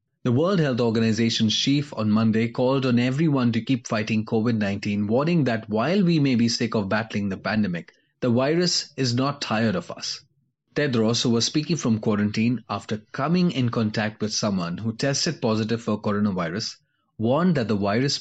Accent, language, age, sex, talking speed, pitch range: Indian, English, 30-49, male, 175 wpm, 110-140 Hz